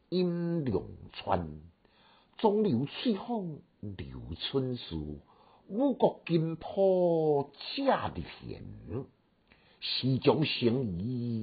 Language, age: Chinese, 60-79